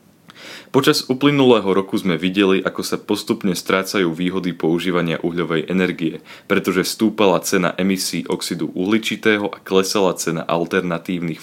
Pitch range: 85-105 Hz